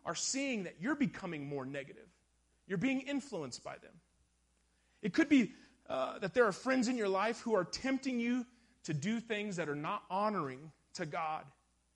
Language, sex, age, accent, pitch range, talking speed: English, male, 30-49, American, 145-225 Hz, 180 wpm